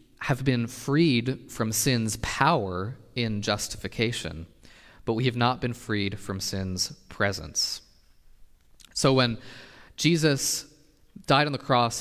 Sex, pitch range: male, 105-125 Hz